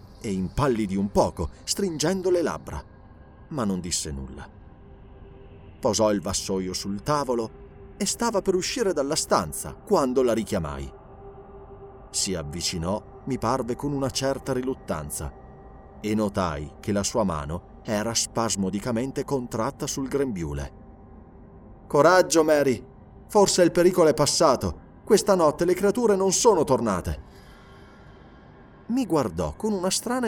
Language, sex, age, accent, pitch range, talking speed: Italian, male, 30-49, native, 95-150 Hz, 125 wpm